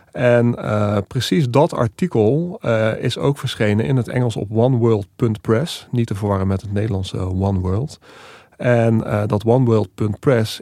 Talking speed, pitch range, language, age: 140 wpm, 105-125 Hz, Dutch, 40-59